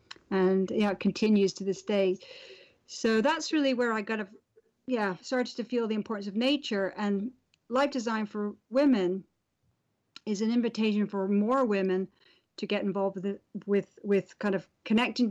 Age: 50-69